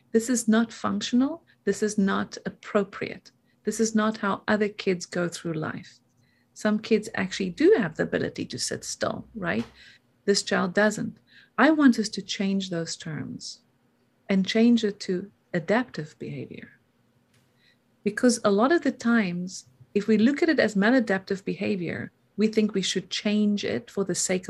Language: English